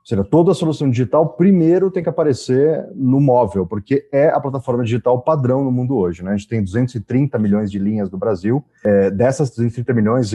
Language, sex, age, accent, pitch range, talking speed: Portuguese, male, 30-49, Brazilian, 120-165 Hz, 205 wpm